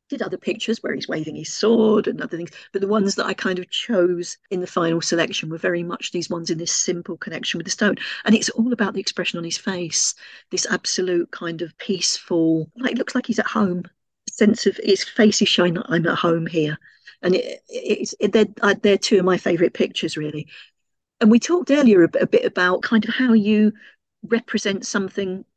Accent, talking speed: British, 215 wpm